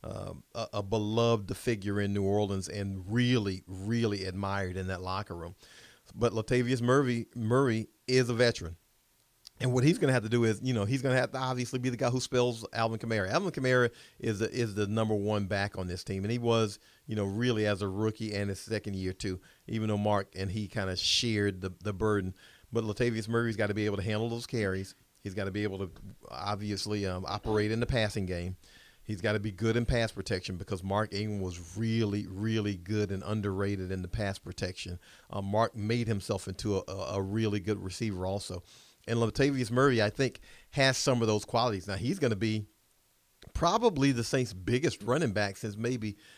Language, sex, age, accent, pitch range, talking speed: English, male, 40-59, American, 100-120 Hz, 210 wpm